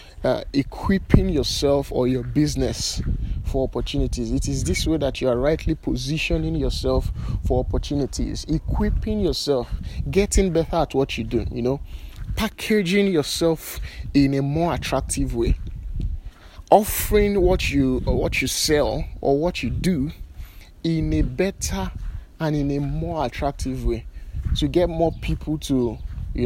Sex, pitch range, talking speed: male, 115-155 Hz, 145 wpm